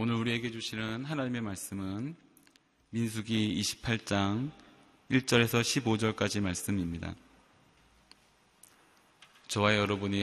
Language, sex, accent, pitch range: Korean, male, native, 95-115 Hz